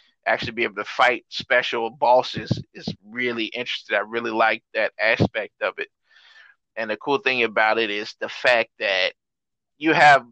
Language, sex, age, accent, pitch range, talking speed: English, male, 30-49, American, 115-150 Hz, 170 wpm